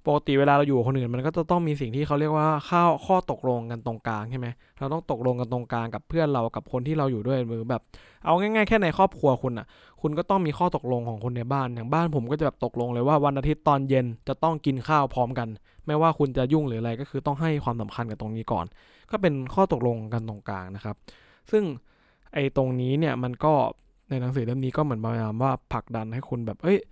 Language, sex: English, male